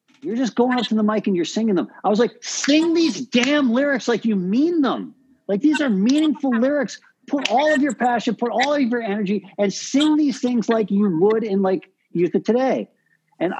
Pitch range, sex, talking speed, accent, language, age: 170-255 Hz, male, 220 wpm, American, English, 50-69